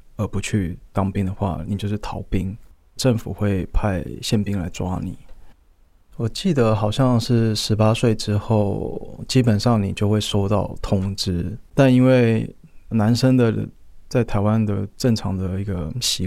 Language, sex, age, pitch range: Chinese, male, 20-39, 95-110 Hz